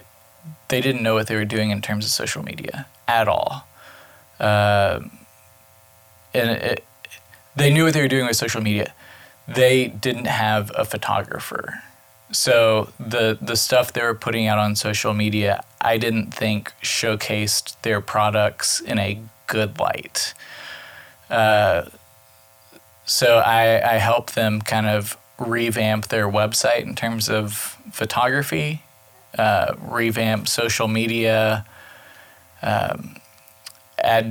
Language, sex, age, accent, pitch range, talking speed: English, male, 20-39, American, 105-115 Hz, 130 wpm